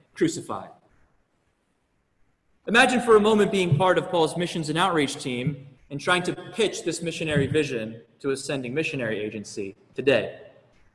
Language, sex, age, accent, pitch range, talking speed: English, male, 20-39, American, 150-210 Hz, 140 wpm